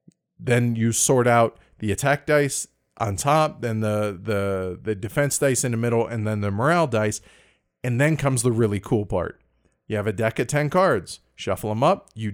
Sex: male